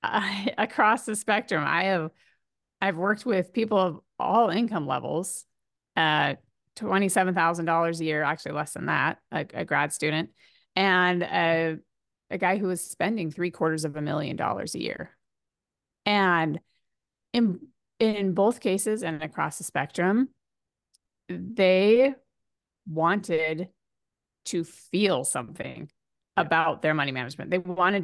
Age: 30-49